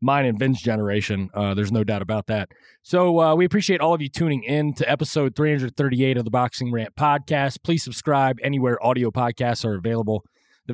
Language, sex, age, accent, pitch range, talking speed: English, male, 30-49, American, 120-160 Hz, 195 wpm